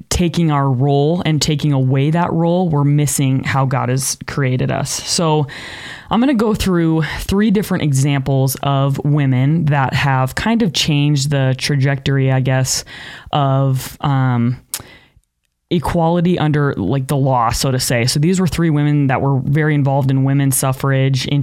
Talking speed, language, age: 160 wpm, English, 20-39